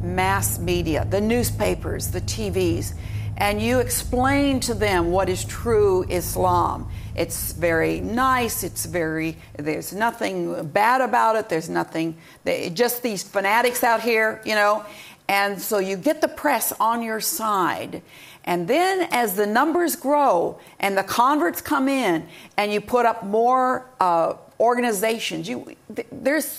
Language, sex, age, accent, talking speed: English, female, 50-69, American, 145 wpm